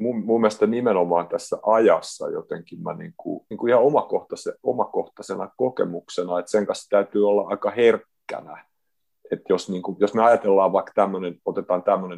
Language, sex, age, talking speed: Finnish, male, 30-49, 170 wpm